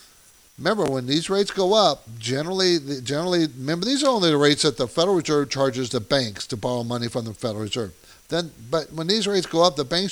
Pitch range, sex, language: 125-180 Hz, male, English